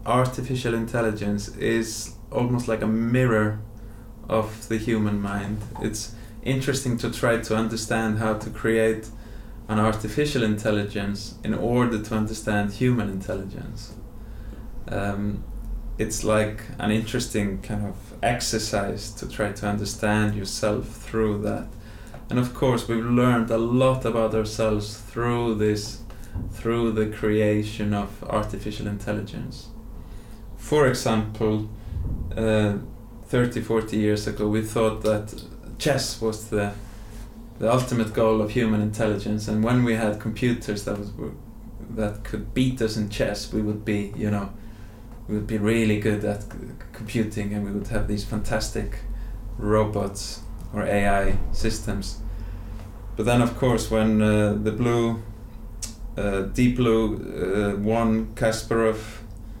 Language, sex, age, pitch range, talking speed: English, male, 20-39, 105-115 Hz, 130 wpm